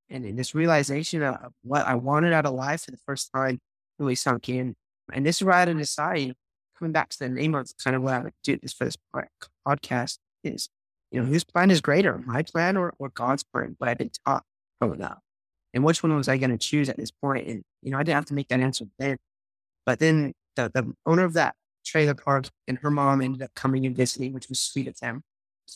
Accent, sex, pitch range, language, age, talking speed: American, male, 130-155 Hz, English, 20-39, 240 wpm